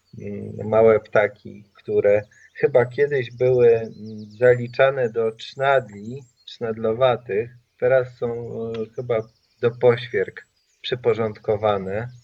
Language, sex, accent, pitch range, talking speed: Polish, male, native, 110-140 Hz, 80 wpm